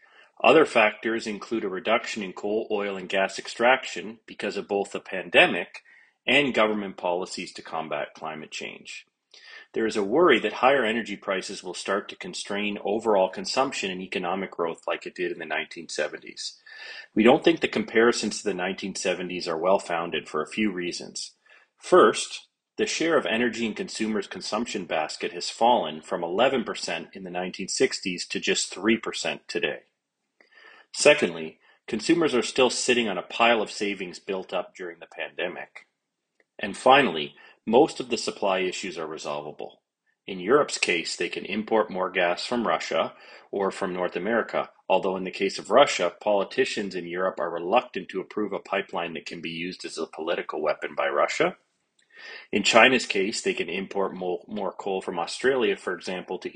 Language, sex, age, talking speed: English, male, 30-49, 165 wpm